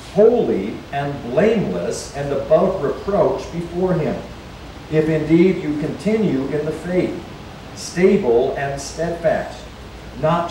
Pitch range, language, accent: 135-195 Hz, English, American